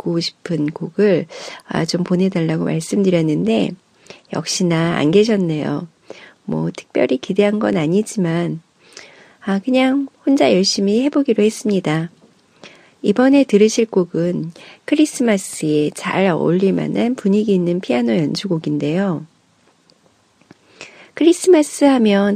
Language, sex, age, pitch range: Korean, female, 40-59, 165-235 Hz